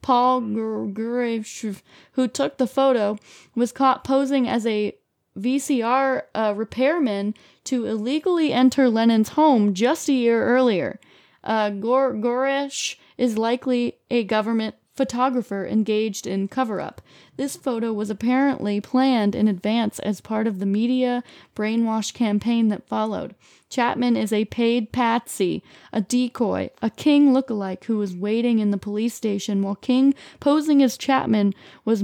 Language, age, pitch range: English, 20-39, 215-260 Hz